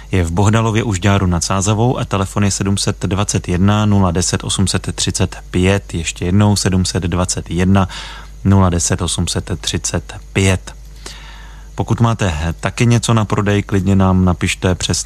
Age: 30-49